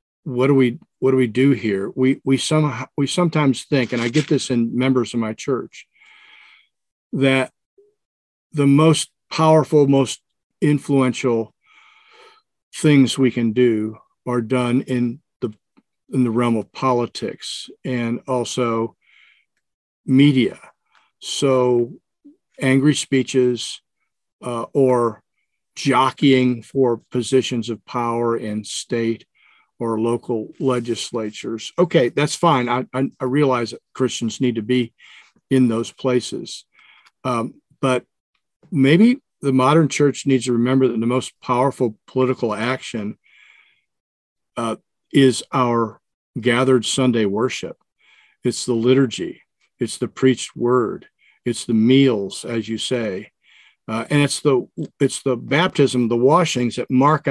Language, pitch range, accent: English, 120-140 Hz, American